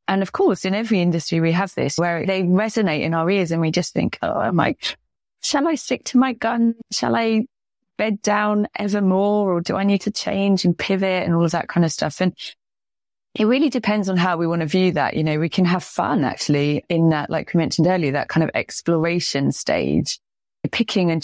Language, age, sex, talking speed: English, 30-49, female, 225 wpm